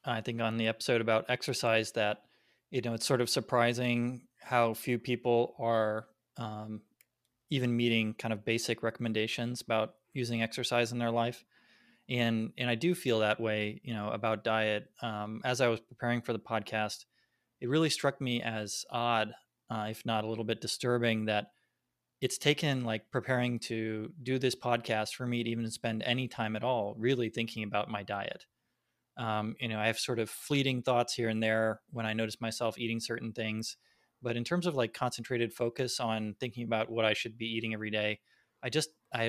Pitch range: 110-120 Hz